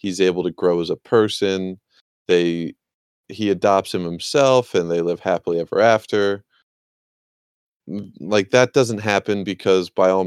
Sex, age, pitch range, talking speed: male, 30-49, 85-100 Hz, 145 wpm